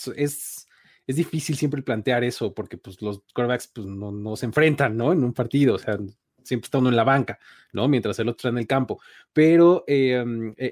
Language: Spanish